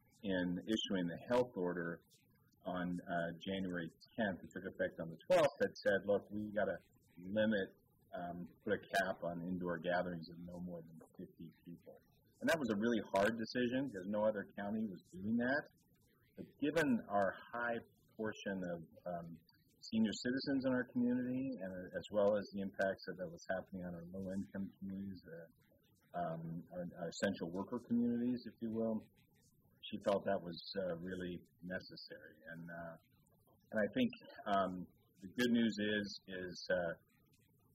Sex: male